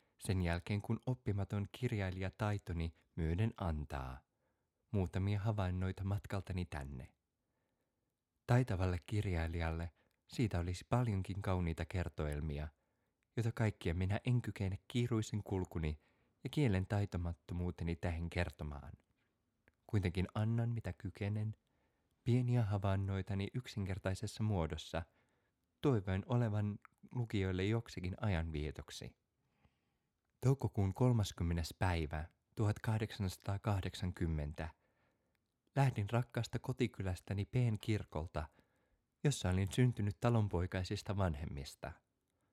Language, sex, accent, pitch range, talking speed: Finnish, male, native, 85-115 Hz, 80 wpm